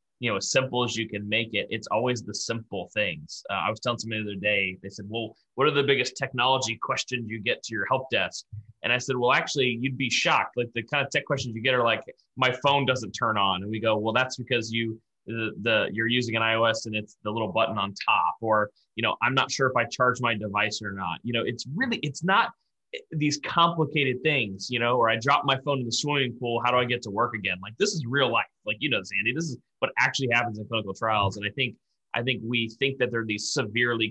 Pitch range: 105-130 Hz